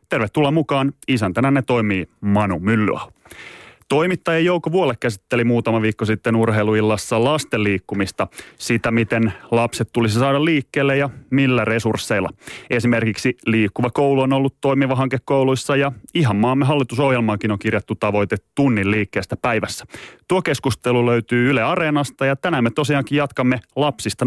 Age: 30-49